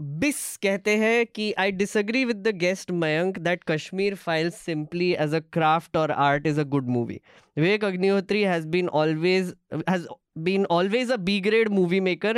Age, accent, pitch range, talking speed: 10-29, native, 150-190 Hz, 170 wpm